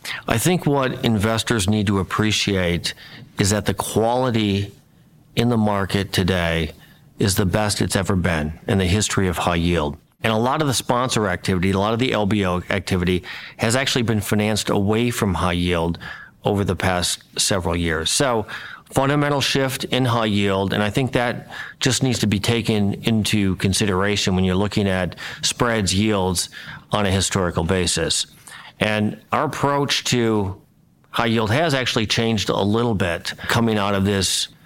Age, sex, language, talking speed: 40-59, male, English, 165 wpm